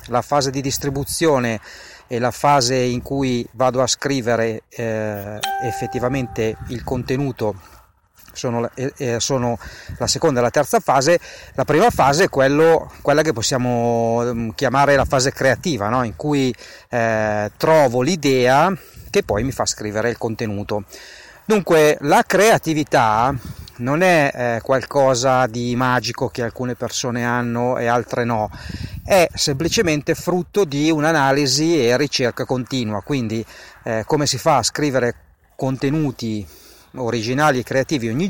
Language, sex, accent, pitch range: Italian, male, native, 115-145 Hz